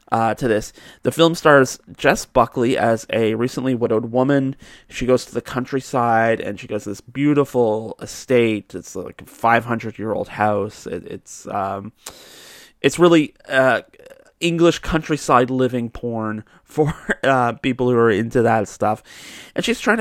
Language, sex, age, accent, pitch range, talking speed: English, male, 30-49, American, 110-135 Hz, 150 wpm